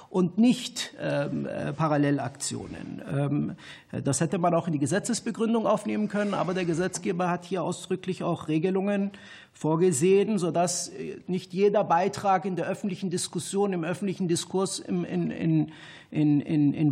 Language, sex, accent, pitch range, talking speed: German, male, German, 145-180 Hz, 115 wpm